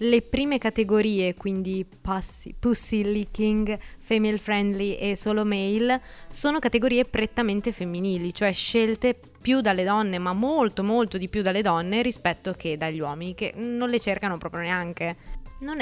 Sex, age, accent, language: female, 20-39, native, Italian